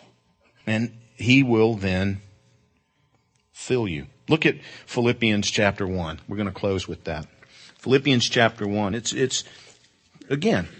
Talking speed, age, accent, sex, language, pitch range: 130 wpm, 50-69, American, male, English, 95-125 Hz